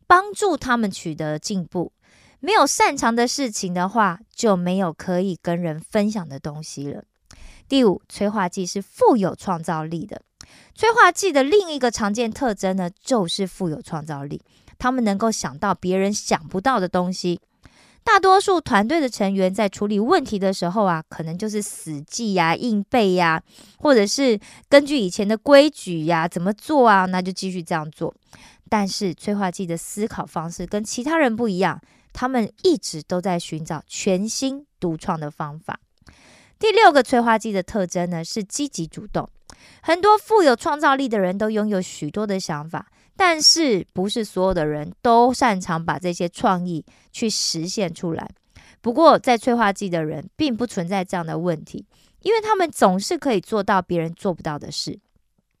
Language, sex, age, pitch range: Korean, female, 20-39, 175-245 Hz